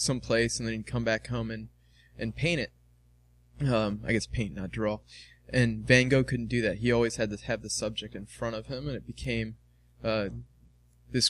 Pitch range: 105-125 Hz